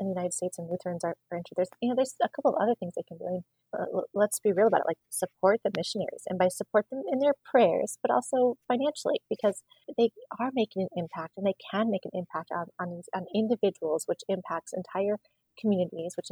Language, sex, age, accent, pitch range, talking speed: English, female, 30-49, American, 180-225 Hz, 235 wpm